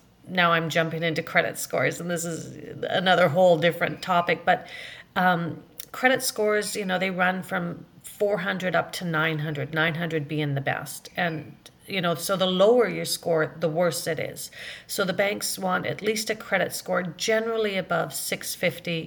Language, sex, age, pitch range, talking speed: English, female, 40-59, 160-190 Hz, 170 wpm